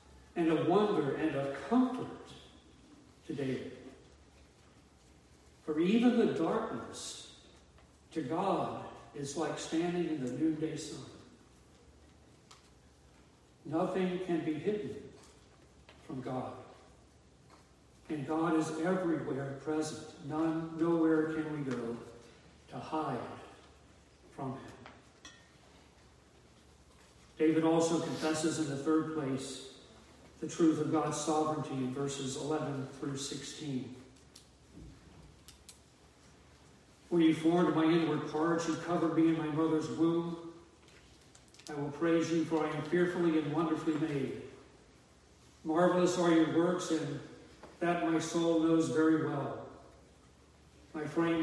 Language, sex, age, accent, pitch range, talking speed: English, male, 60-79, American, 110-160 Hz, 110 wpm